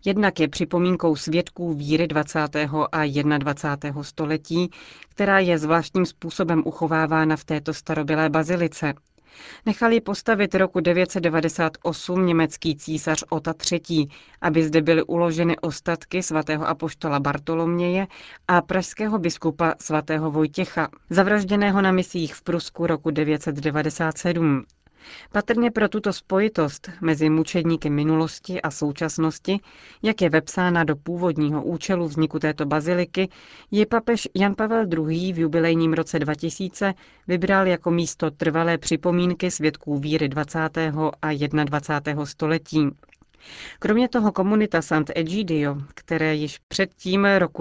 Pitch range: 155-180 Hz